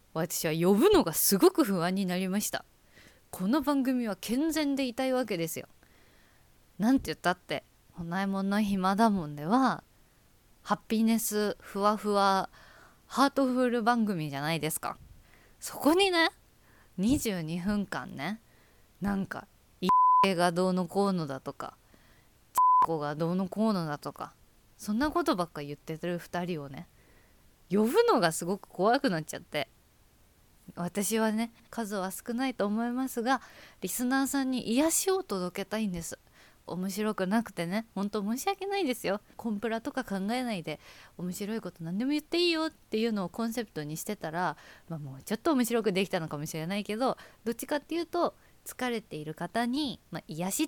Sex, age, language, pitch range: female, 20-39, Japanese, 175-245 Hz